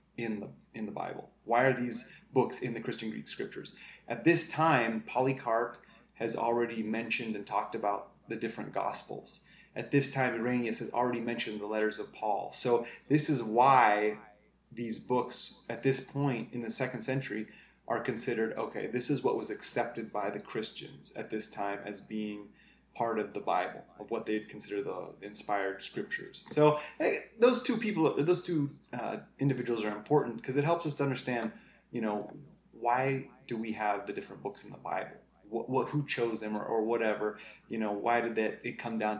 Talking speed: 185 wpm